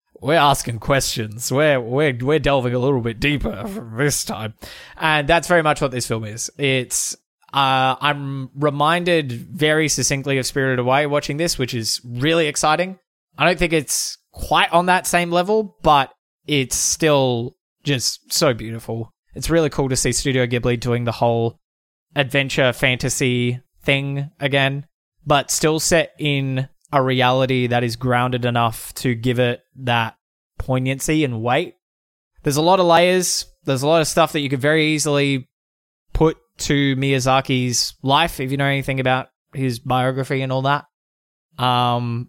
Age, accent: 20-39, Australian